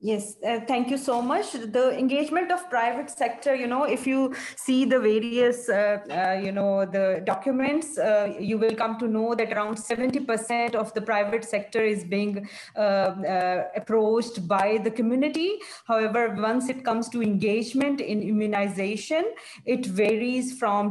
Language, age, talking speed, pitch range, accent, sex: English, 30-49, 160 wpm, 210-245 Hz, Indian, female